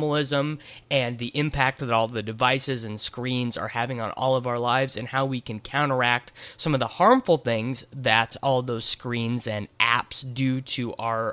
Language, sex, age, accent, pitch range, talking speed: English, male, 30-49, American, 120-145 Hz, 185 wpm